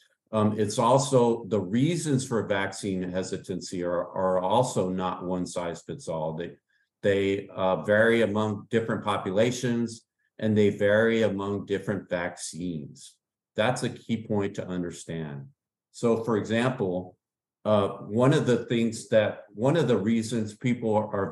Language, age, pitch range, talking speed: English, 50-69, 95-115 Hz, 140 wpm